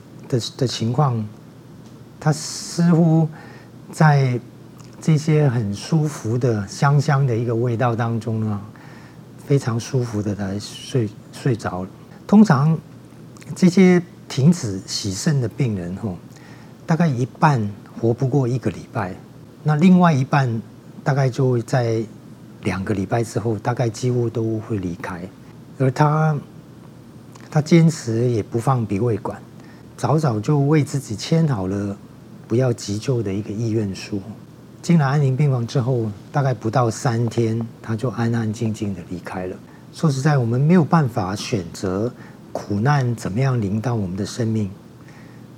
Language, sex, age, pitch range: Chinese, male, 40-59, 110-145 Hz